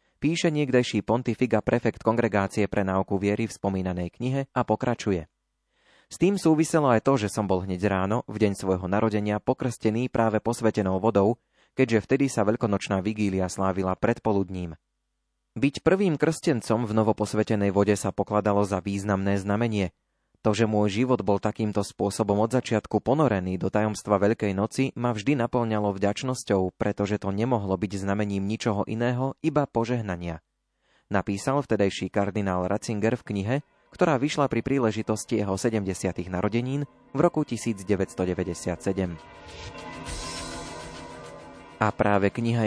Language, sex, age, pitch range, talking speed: Slovak, male, 20-39, 100-120 Hz, 135 wpm